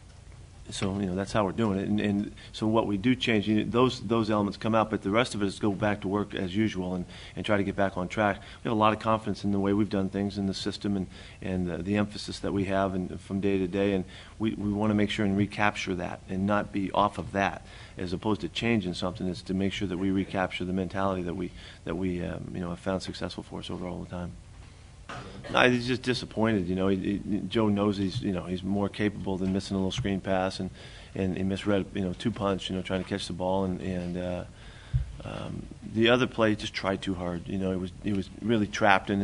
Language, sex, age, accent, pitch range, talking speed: English, male, 40-59, American, 95-105 Hz, 265 wpm